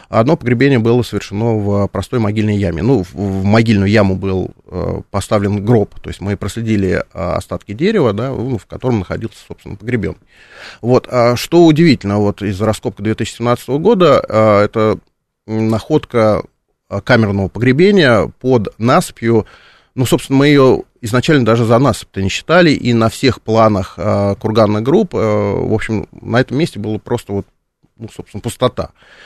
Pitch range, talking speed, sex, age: 100-120 Hz, 150 wpm, male, 30-49